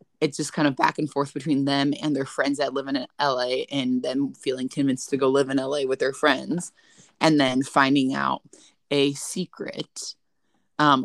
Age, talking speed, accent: 20-39, 190 wpm, American